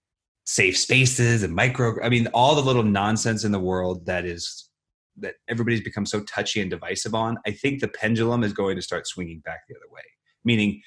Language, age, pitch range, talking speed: English, 30-49, 95-120 Hz, 205 wpm